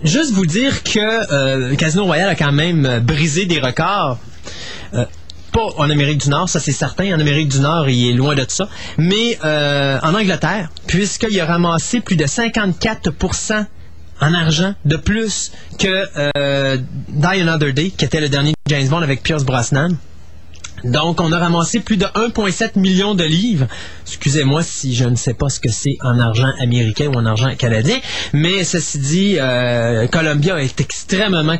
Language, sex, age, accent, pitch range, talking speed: French, male, 30-49, Canadian, 135-190 Hz, 175 wpm